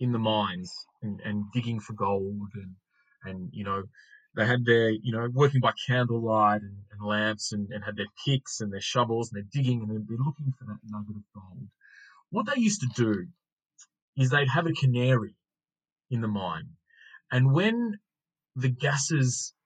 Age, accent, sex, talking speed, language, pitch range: 20-39, Australian, male, 190 wpm, English, 110-150 Hz